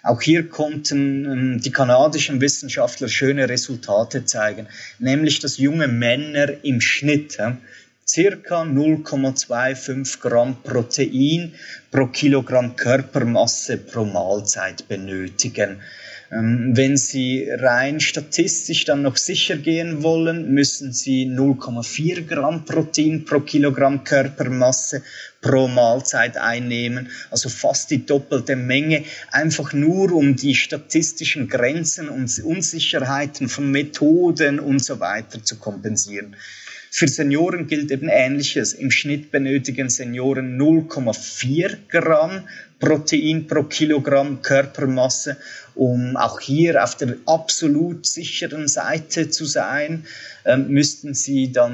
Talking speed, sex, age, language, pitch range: 110 wpm, male, 30-49, German, 125-155 Hz